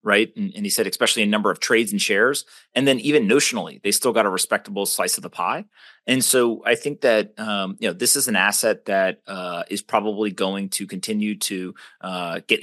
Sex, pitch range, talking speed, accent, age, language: male, 100-125 Hz, 225 wpm, American, 30-49, English